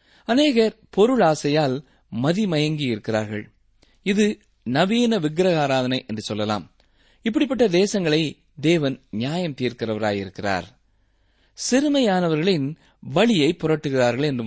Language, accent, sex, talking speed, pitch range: Tamil, native, male, 80 wpm, 120-195 Hz